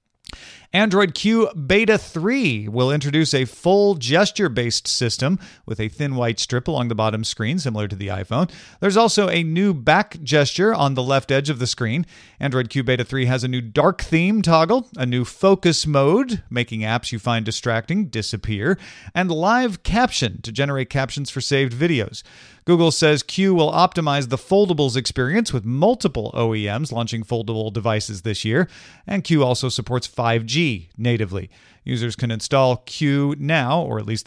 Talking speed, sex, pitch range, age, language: 165 wpm, male, 120-165 Hz, 40-59, English